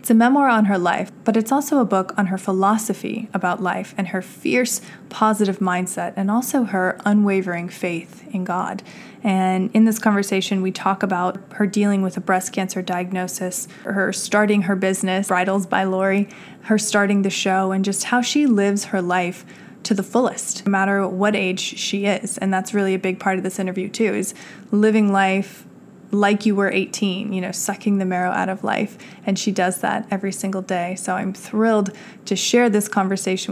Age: 20-39